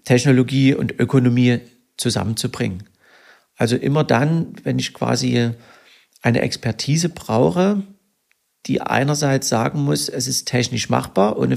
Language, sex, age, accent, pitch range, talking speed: German, male, 40-59, German, 120-145 Hz, 115 wpm